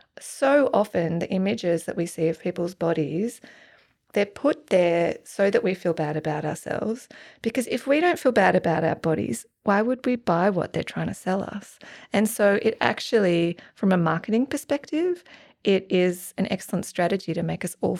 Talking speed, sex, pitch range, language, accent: 185 wpm, female, 175-220 Hz, English, Australian